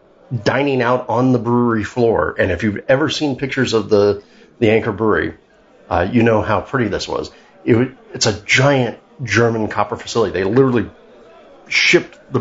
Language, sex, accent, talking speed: English, male, American, 165 wpm